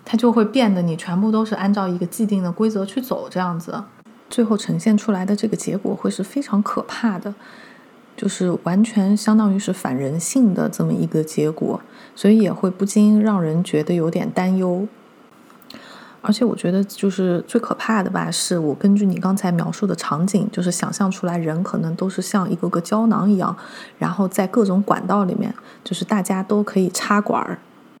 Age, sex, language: 30-49, female, Chinese